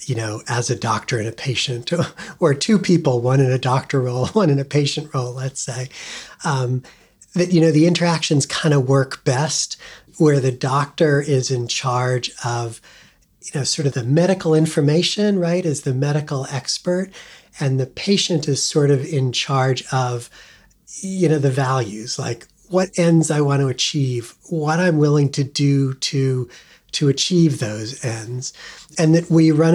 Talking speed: 175 wpm